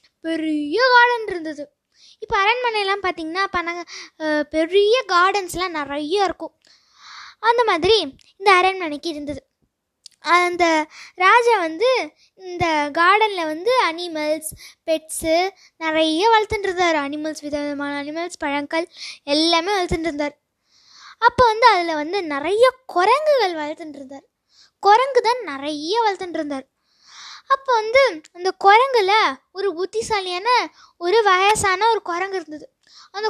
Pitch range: 315-410 Hz